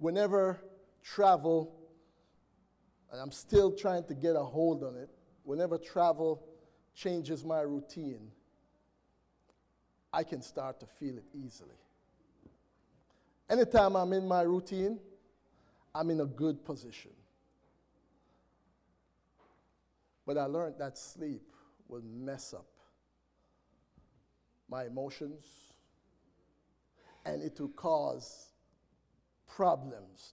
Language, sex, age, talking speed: English, male, 50-69, 95 wpm